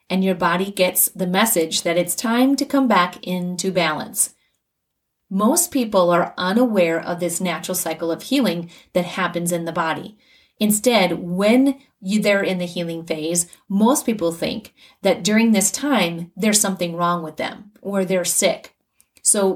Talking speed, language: 160 wpm, English